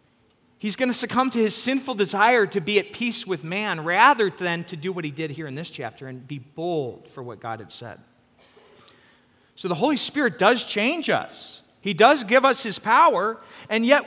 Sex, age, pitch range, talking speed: male, 40-59, 145-230 Hz, 205 wpm